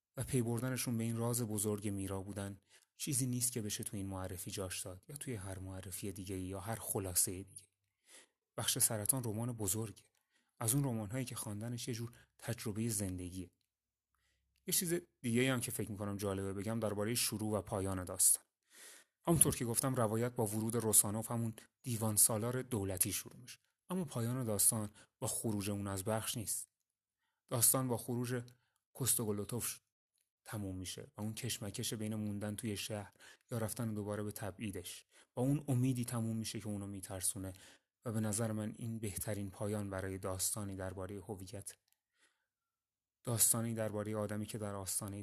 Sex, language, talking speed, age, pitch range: male, Persian, 160 wpm, 30-49, 100-120 Hz